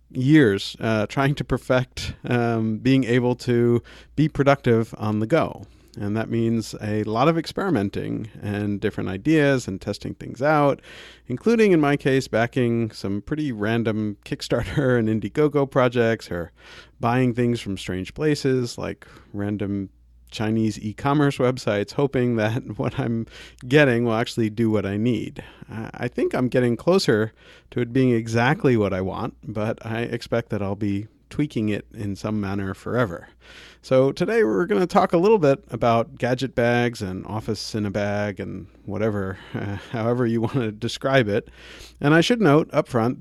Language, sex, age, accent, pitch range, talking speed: English, male, 40-59, American, 105-135 Hz, 165 wpm